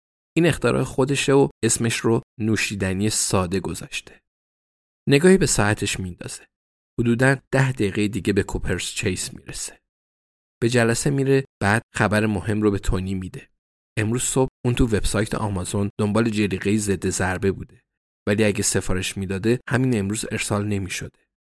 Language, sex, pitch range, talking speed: Persian, male, 95-120 Hz, 140 wpm